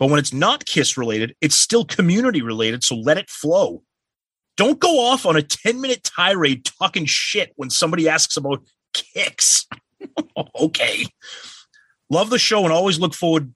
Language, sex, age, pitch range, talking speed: English, male, 30-49, 130-180 Hz, 165 wpm